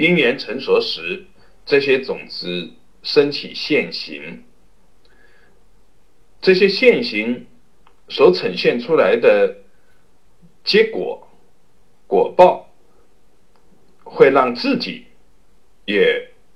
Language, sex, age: Chinese, male, 50-69